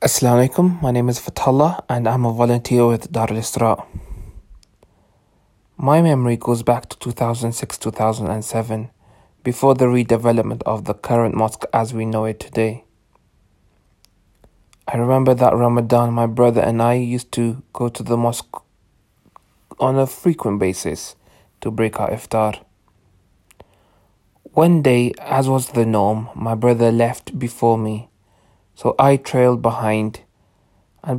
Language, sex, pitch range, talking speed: English, male, 110-120 Hz, 135 wpm